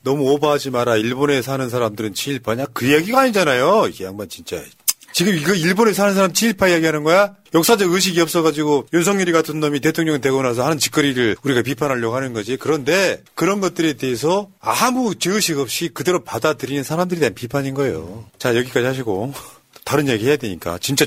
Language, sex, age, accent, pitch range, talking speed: English, male, 40-59, Korean, 120-175 Hz, 160 wpm